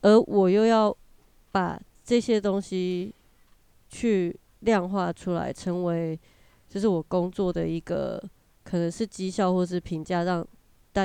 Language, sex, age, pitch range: Chinese, female, 20-39, 170-205 Hz